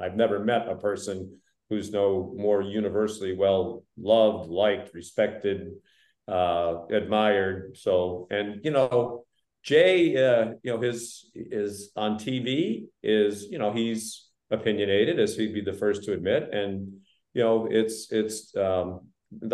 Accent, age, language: American, 50-69, English